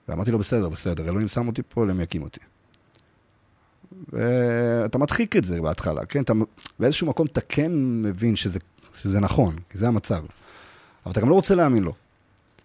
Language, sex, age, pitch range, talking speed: Hebrew, male, 30-49, 95-125 Hz, 170 wpm